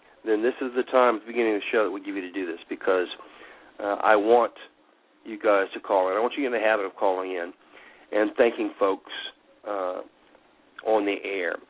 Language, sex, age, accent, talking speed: English, male, 50-69, American, 230 wpm